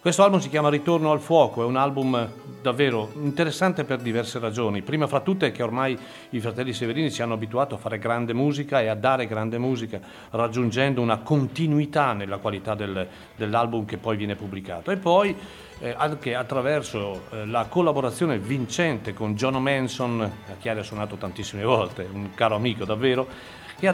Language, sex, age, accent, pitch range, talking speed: Italian, male, 40-59, native, 110-150 Hz, 175 wpm